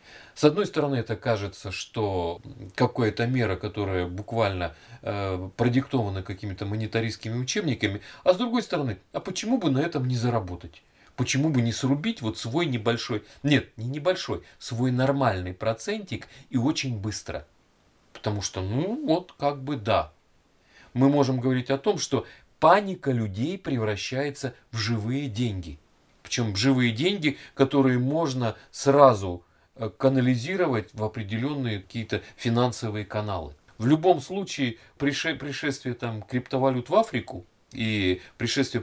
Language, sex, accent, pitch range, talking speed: Russian, male, native, 110-140 Hz, 130 wpm